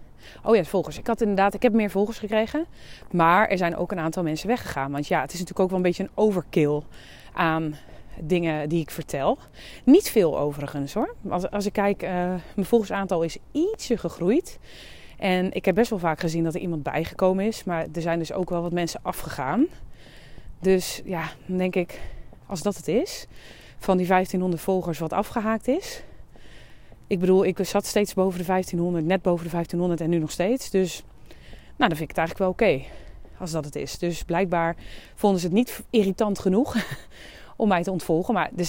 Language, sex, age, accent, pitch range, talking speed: English, female, 30-49, Dutch, 165-205 Hz, 200 wpm